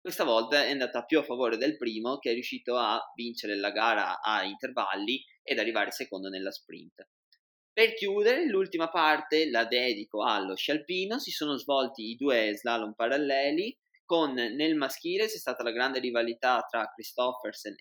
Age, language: 20-39, Italian